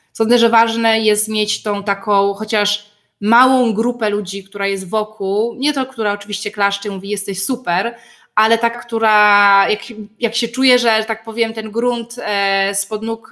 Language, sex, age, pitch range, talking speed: Polish, female, 20-39, 195-225 Hz, 170 wpm